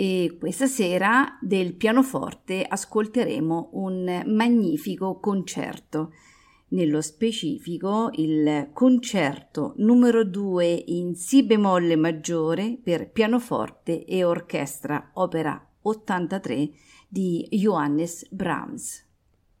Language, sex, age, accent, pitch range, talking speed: Italian, female, 50-69, native, 160-220 Hz, 85 wpm